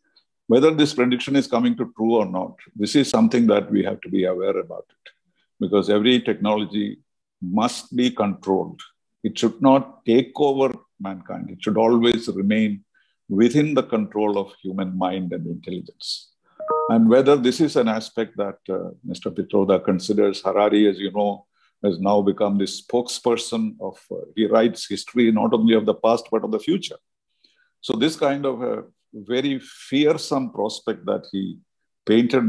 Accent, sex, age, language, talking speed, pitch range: Indian, male, 50-69, English, 165 wpm, 100-135 Hz